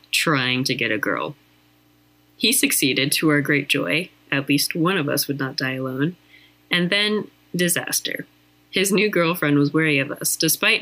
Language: English